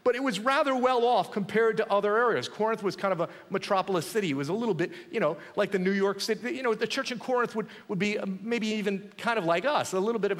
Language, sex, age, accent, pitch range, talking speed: English, male, 40-59, American, 175-230 Hz, 275 wpm